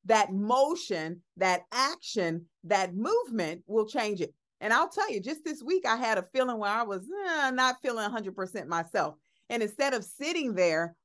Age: 40-59